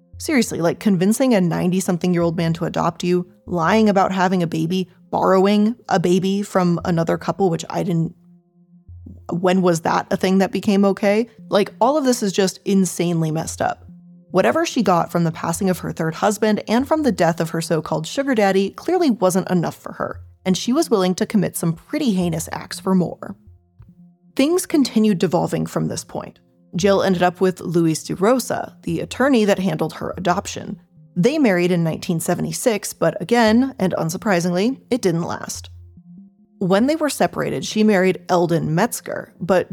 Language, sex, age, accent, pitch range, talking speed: English, female, 20-39, American, 170-210 Hz, 180 wpm